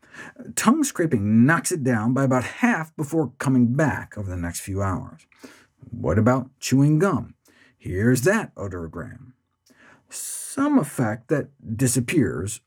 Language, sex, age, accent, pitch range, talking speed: English, male, 50-69, American, 115-155 Hz, 125 wpm